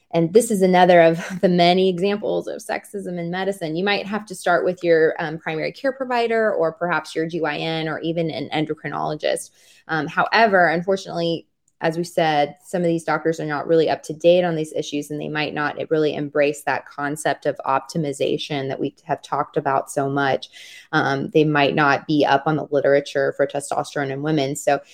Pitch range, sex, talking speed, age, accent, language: 155-225 Hz, female, 195 wpm, 20-39, American, English